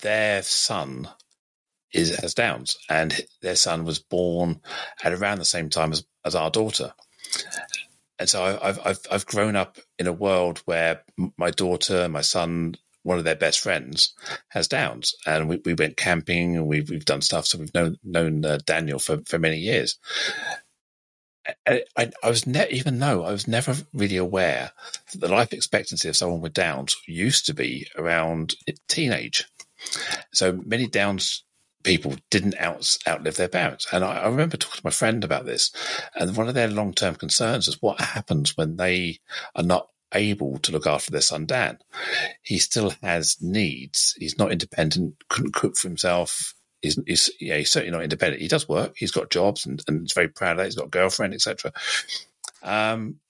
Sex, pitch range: male, 80-105 Hz